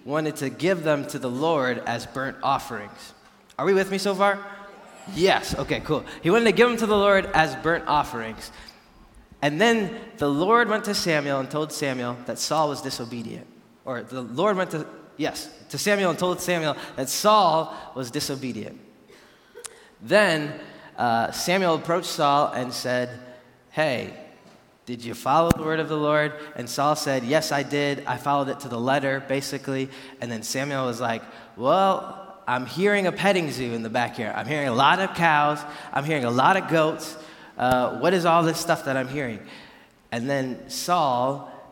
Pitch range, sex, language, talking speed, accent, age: 130-170 Hz, male, English, 180 wpm, American, 20-39